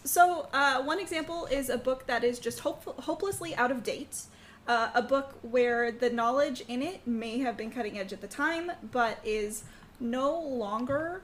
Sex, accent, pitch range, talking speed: female, American, 235-290 Hz, 185 wpm